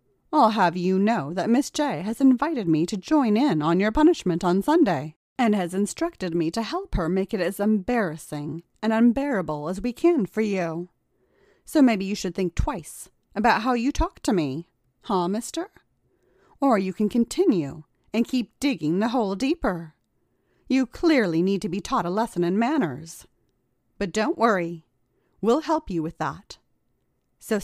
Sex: female